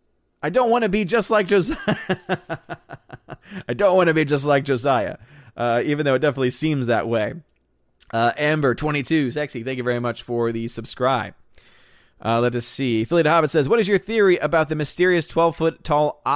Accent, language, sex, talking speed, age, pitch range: American, English, male, 185 wpm, 30-49, 130-165 Hz